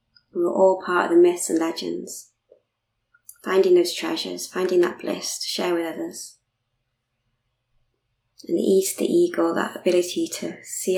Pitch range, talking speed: 115-180 Hz, 160 wpm